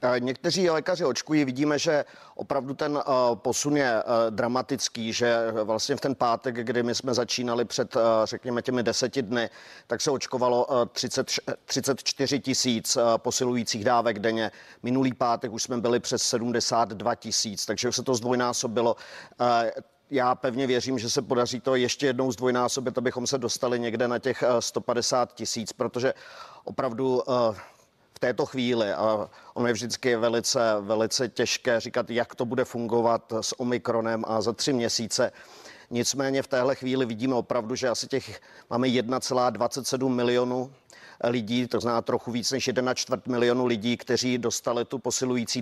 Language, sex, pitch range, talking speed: Czech, male, 115-130 Hz, 145 wpm